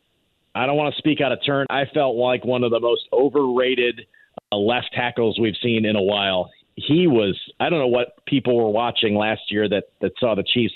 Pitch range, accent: 115-140 Hz, American